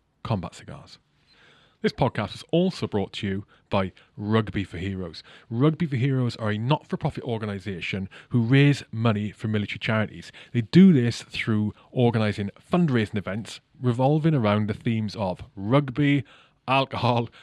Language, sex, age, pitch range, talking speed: English, male, 30-49, 105-130 Hz, 140 wpm